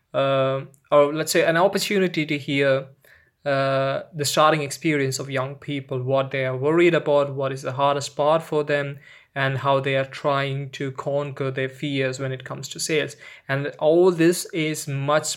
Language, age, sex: English, 20-39, male